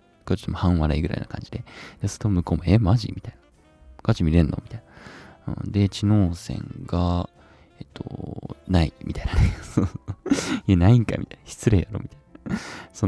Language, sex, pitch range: Japanese, male, 80-105 Hz